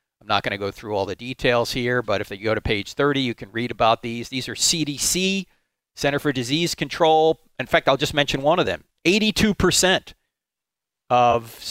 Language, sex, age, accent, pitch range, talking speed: English, male, 40-59, American, 125-165 Hz, 195 wpm